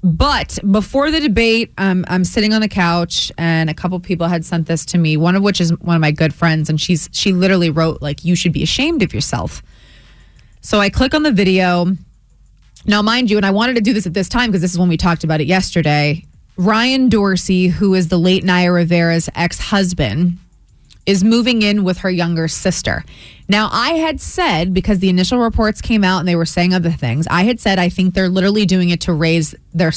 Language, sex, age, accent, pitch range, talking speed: English, female, 30-49, American, 170-205 Hz, 225 wpm